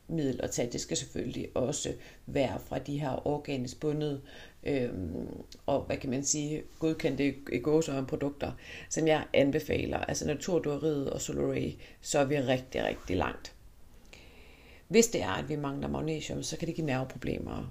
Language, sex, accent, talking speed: Danish, female, native, 160 wpm